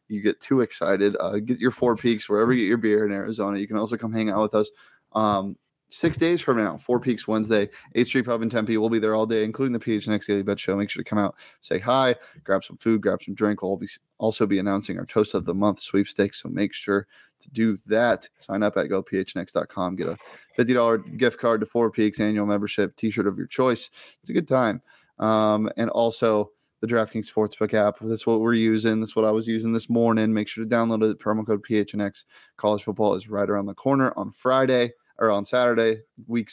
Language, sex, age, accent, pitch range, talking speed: English, male, 20-39, American, 105-115 Hz, 235 wpm